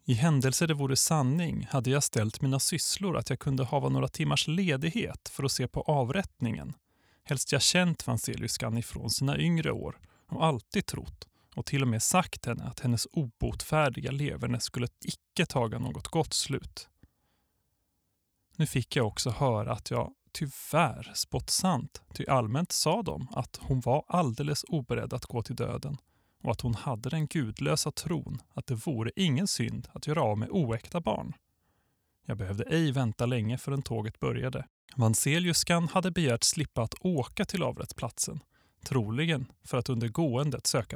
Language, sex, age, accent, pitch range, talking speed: Swedish, male, 30-49, native, 115-150 Hz, 165 wpm